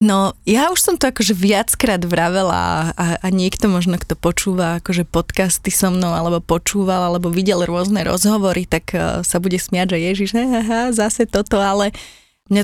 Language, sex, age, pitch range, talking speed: Slovak, female, 20-39, 195-235 Hz, 165 wpm